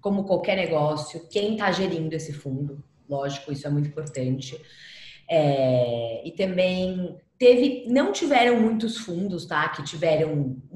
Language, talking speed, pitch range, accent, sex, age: Portuguese, 140 wpm, 165-225 Hz, Brazilian, female, 20-39